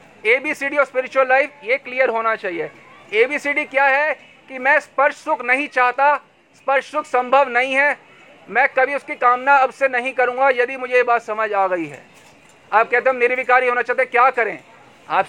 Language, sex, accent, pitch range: Hindi, male, native, 200-280 Hz